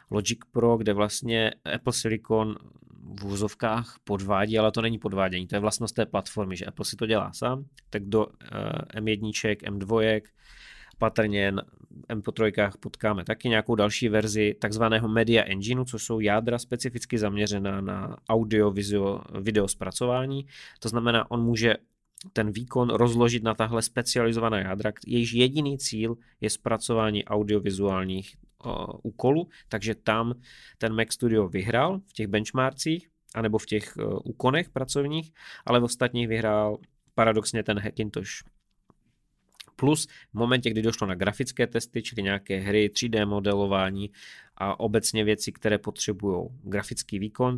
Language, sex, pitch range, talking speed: Czech, male, 105-120 Hz, 135 wpm